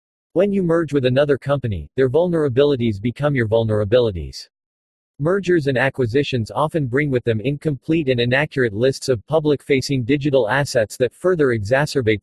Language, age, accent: English, 40-59, American